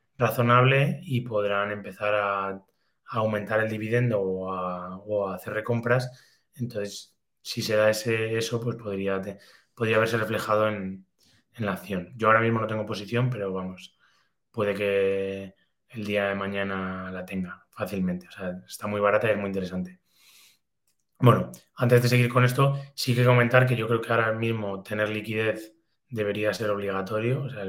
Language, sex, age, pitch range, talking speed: Spanish, male, 20-39, 100-120 Hz, 165 wpm